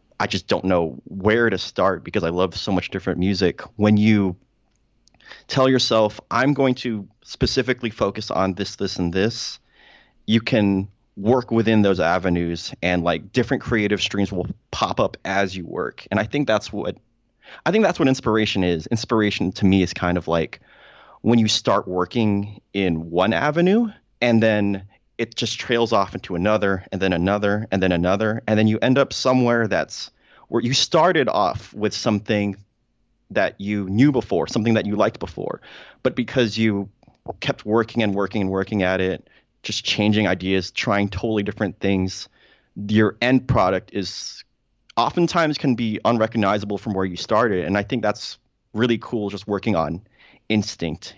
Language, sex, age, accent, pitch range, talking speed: English, male, 30-49, American, 95-115 Hz, 170 wpm